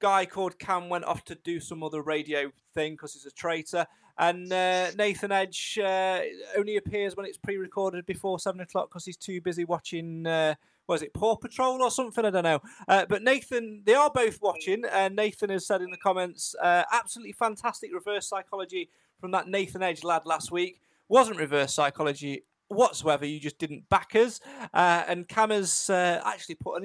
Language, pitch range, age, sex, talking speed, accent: English, 160-205 Hz, 30-49, male, 195 wpm, British